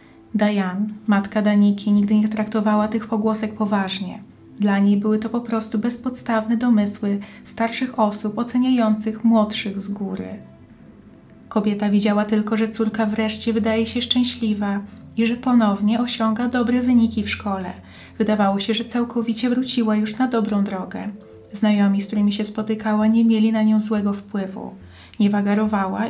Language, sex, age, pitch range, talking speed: Polish, female, 30-49, 205-230 Hz, 145 wpm